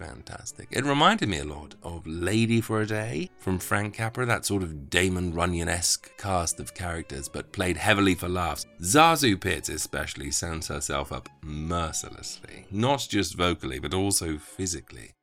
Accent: British